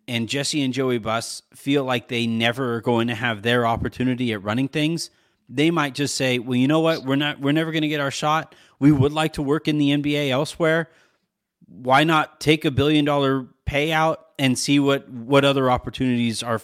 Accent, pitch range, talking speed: American, 115-145 Hz, 205 wpm